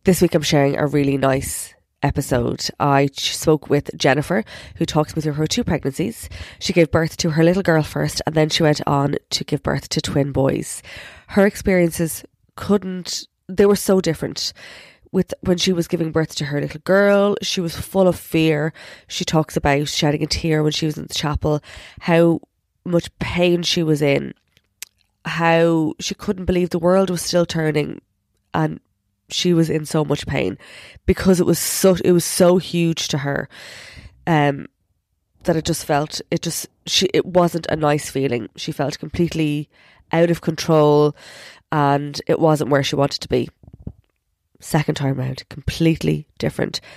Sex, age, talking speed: female, 20-39, 175 wpm